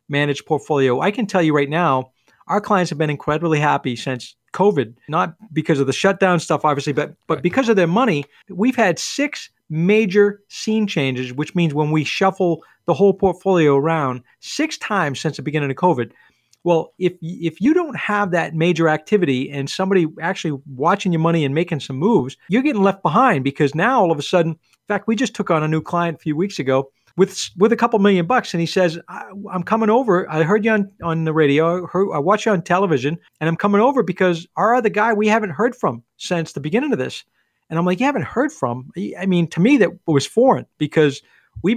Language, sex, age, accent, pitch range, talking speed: English, male, 40-59, American, 150-205 Hz, 220 wpm